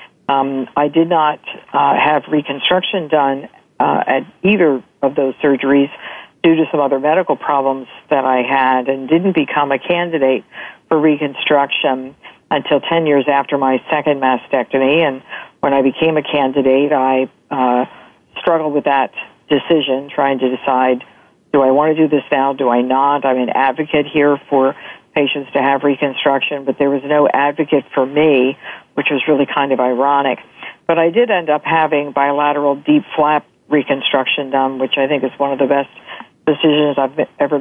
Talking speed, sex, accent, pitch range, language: 170 wpm, female, American, 135-155 Hz, English